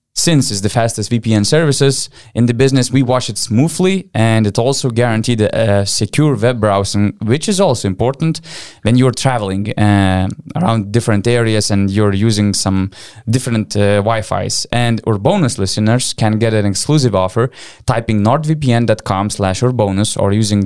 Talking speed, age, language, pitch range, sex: 155 wpm, 20-39, English, 105-130 Hz, male